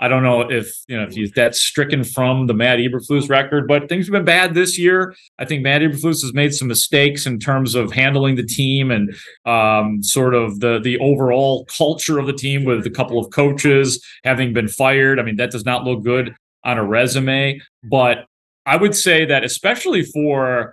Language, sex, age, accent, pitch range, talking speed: English, male, 30-49, American, 115-145 Hz, 210 wpm